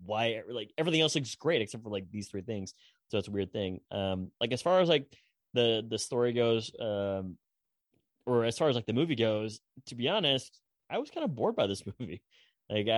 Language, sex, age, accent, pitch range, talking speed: English, male, 20-39, American, 95-125 Hz, 220 wpm